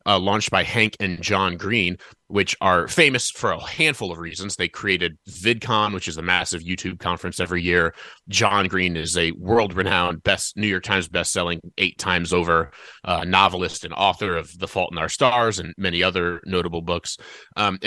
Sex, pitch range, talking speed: male, 90-115 Hz, 185 wpm